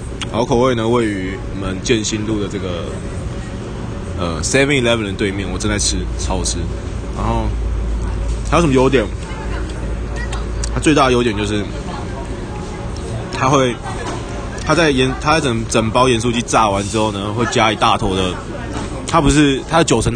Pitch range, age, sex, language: 95-115 Hz, 20-39, male, Chinese